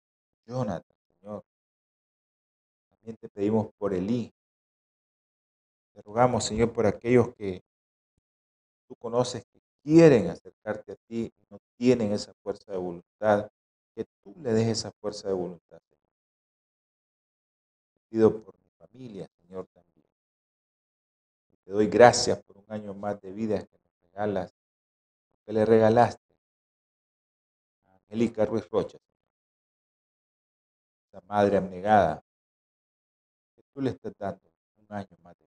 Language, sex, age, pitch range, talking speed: Spanish, male, 40-59, 85-110 Hz, 125 wpm